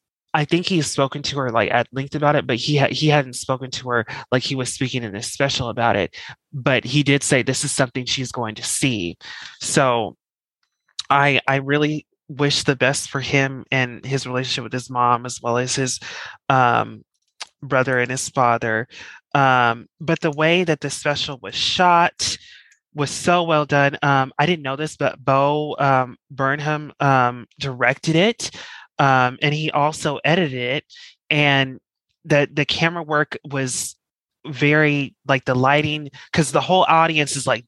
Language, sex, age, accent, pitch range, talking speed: English, male, 20-39, American, 130-150 Hz, 175 wpm